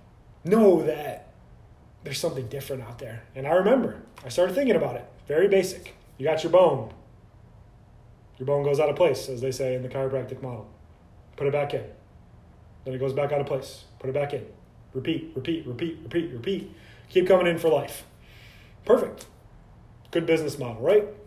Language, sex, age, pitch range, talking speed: English, male, 30-49, 120-165 Hz, 180 wpm